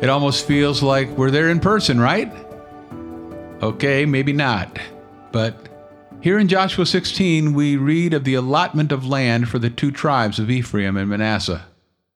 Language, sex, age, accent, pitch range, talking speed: English, male, 50-69, American, 105-150 Hz, 160 wpm